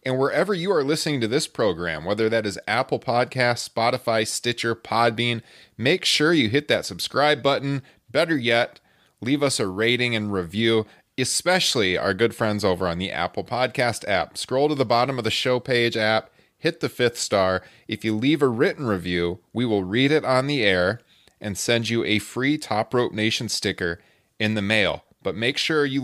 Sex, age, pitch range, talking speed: male, 30-49, 100-135 Hz, 190 wpm